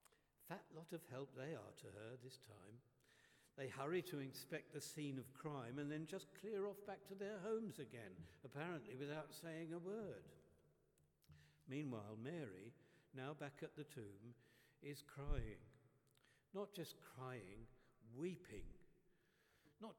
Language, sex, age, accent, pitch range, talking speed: English, male, 60-79, British, 135-190 Hz, 140 wpm